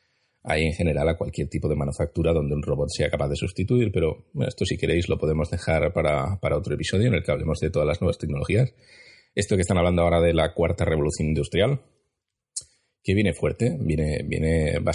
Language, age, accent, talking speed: Spanish, 30-49, Spanish, 210 wpm